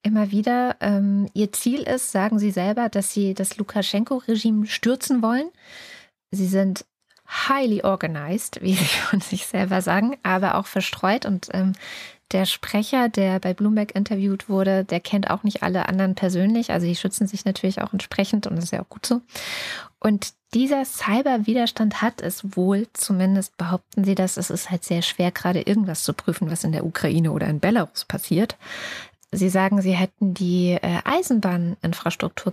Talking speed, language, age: 170 wpm, German, 20-39